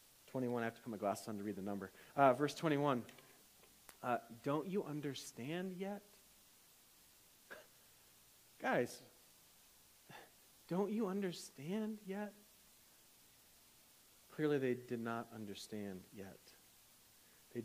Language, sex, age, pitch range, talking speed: English, male, 40-59, 110-155 Hz, 110 wpm